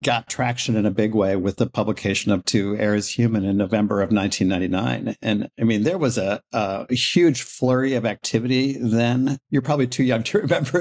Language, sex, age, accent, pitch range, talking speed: English, male, 50-69, American, 115-130 Hz, 195 wpm